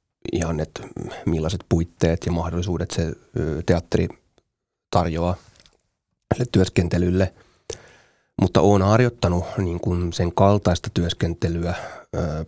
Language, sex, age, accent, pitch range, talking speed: Finnish, male, 30-49, native, 85-95 Hz, 75 wpm